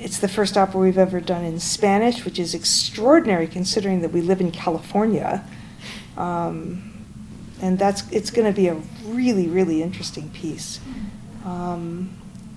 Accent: American